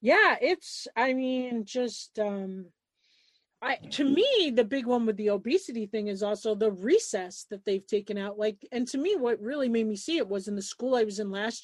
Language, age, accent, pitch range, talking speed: English, 40-59, American, 210-260 Hz, 215 wpm